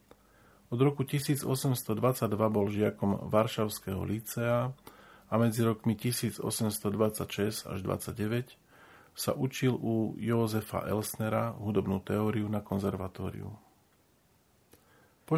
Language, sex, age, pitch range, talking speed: Slovak, male, 40-59, 105-125 Hz, 90 wpm